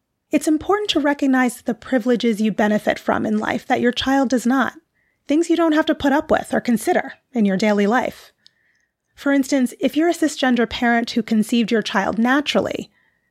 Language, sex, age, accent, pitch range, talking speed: English, female, 30-49, American, 225-275 Hz, 190 wpm